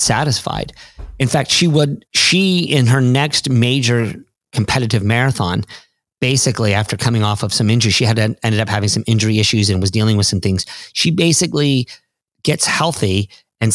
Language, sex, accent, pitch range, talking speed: English, male, American, 105-140 Hz, 165 wpm